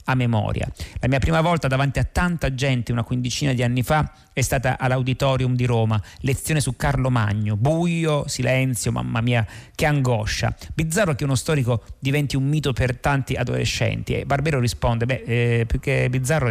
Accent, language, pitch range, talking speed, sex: native, Italian, 115-145 Hz, 175 wpm, male